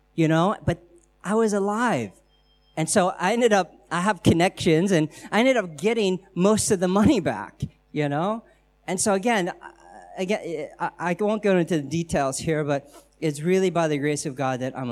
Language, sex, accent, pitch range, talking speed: English, male, American, 145-195 Hz, 190 wpm